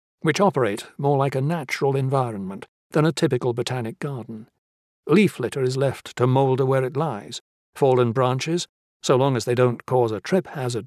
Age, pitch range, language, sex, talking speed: 60-79, 125-145 Hz, English, male, 175 wpm